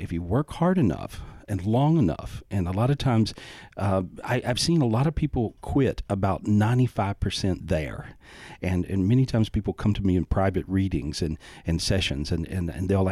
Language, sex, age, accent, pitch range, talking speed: English, male, 40-59, American, 95-120 Hz, 195 wpm